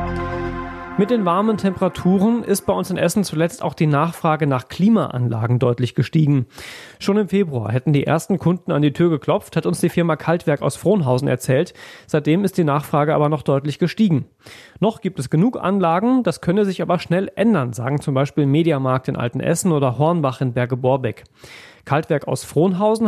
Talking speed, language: 175 wpm, German